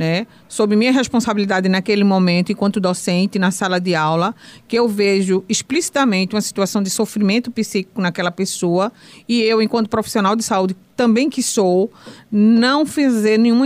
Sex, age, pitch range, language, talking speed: female, 50-69, 195-250 Hz, Portuguese, 155 wpm